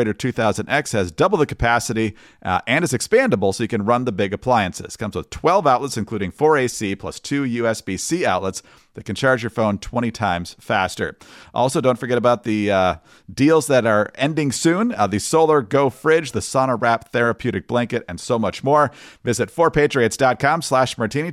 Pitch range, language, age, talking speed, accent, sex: 110-145 Hz, English, 40-59, 180 wpm, American, male